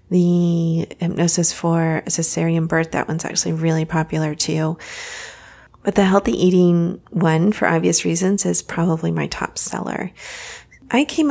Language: English